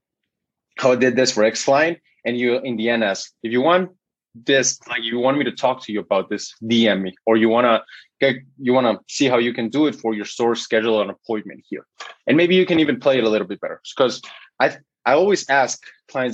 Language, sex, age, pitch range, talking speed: English, male, 20-39, 110-135 Hz, 240 wpm